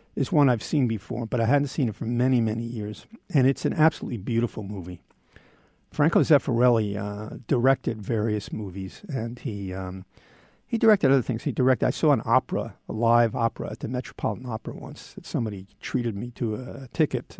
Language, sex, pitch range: English, male, 115-150 Hz